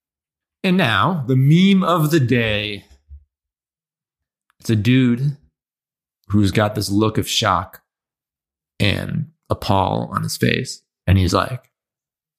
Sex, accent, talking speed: male, American, 115 wpm